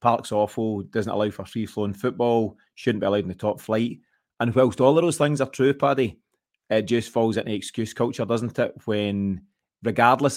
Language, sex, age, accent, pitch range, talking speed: English, male, 30-49, British, 110-130 Hz, 190 wpm